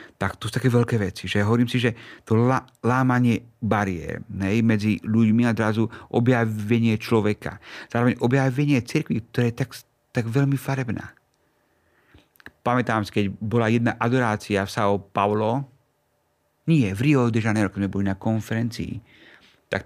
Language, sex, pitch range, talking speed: Slovak, male, 105-120 Hz, 145 wpm